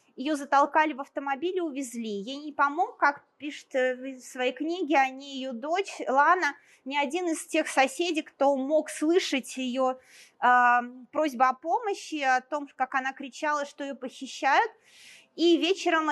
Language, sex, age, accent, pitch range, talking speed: Russian, female, 20-39, native, 255-325 Hz, 155 wpm